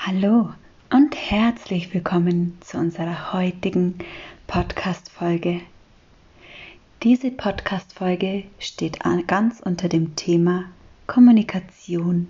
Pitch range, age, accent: 175-225 Hz, 20-39, German